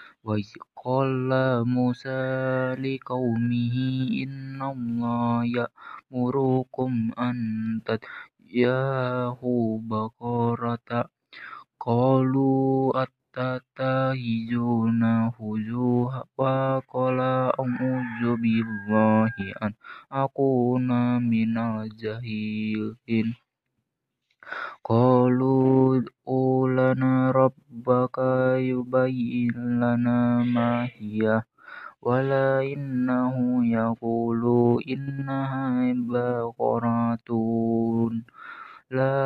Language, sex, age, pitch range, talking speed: Indonesian, male, 20-39, 115-130 Hz, 45 wpm